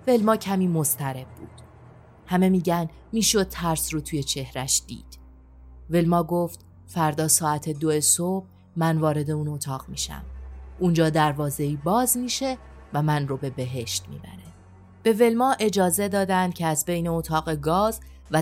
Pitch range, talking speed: 135-175 Hz, 140 wpm